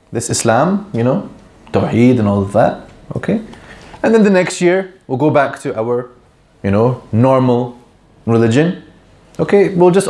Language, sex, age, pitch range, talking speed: English, male, 20-39, 110-160 Hz, 160 wpm